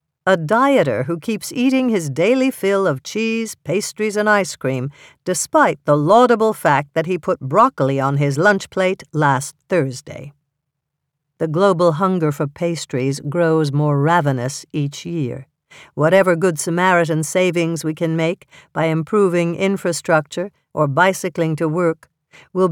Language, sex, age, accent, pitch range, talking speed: English, female, 60-79, American, 150-195 Hz, 140 wpm